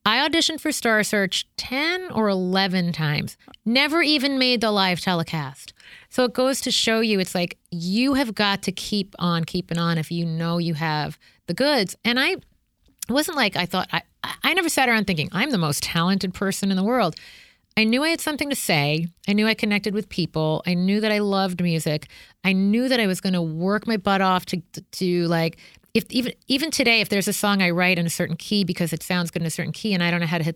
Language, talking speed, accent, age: English, 235 wpm, American, 30-49